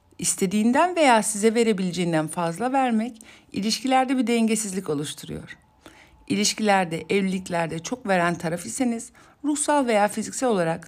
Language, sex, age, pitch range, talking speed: Turkish, female, 60-79, 160-240 Hz, 110 wpm